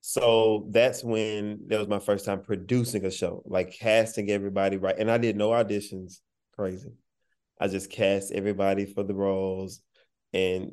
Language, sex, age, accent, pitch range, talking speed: English, male, 20-39, American, 95-110 Hz, 160 wpm